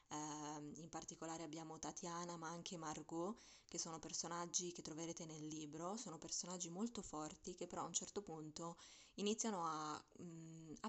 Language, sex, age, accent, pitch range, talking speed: Italian, female, 20-39, native, 160-195 Hz, 150 wpm